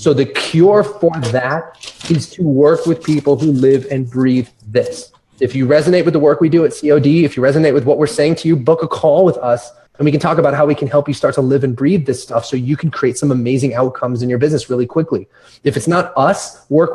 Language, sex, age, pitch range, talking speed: English, male, 30-49, 125-155 Hz, 260 wpm